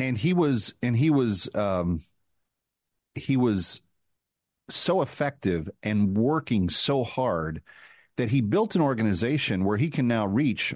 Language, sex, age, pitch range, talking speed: English, male, 40-59, 95-130 Hz, 140 wpm